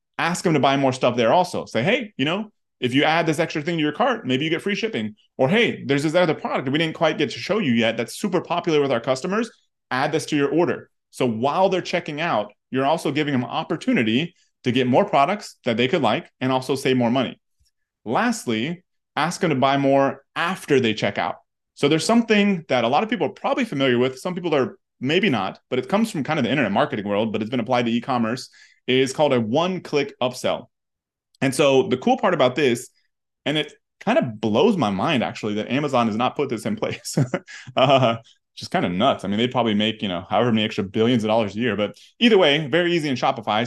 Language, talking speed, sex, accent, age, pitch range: English, 240 wpm, male, American, 30-49, 125-170 Hz